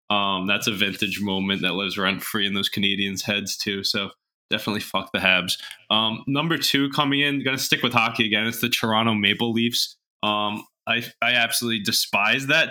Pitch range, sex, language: 105-120 Hz, male, English